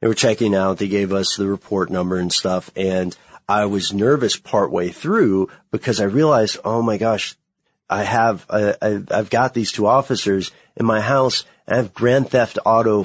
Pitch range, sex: 95-120 Hz, male